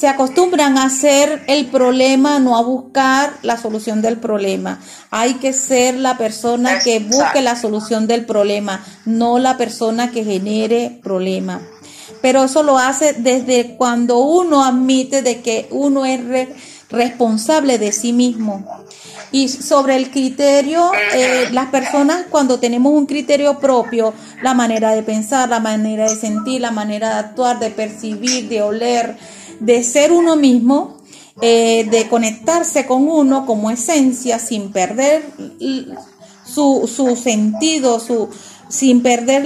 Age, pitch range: 30-49, 225-275 Hz